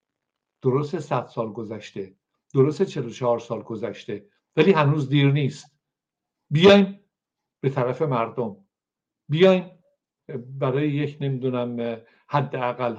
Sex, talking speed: male, 100 wpm